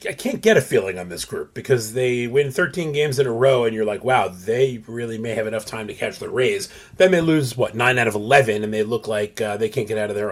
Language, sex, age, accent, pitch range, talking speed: English, male, 30-49, American, 110-135 Hz, 285 wpm